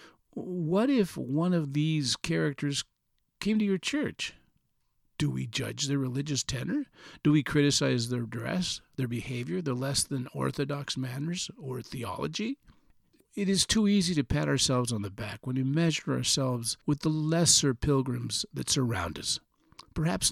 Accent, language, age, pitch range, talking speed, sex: American, English, 50-69, 130-170 Hz, 150 wpm, male